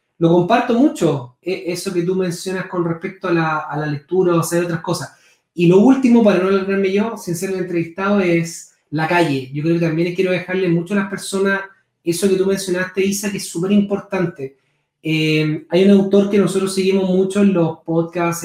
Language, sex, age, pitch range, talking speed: Spanish, male, 30-49, 165-195 Hz, 210 wpm